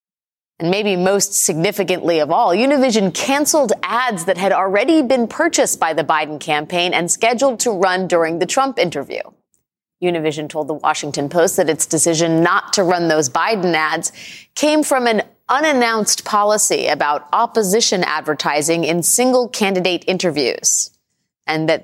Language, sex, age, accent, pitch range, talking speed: English, female, 30-49, American, 160-220 Hz, 150 wpm